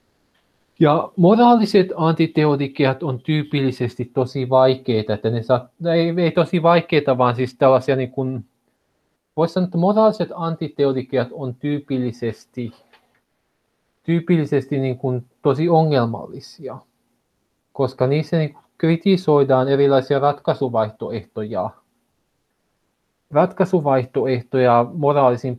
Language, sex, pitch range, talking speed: Finnish, male, 125-150 Hz, 85 wpm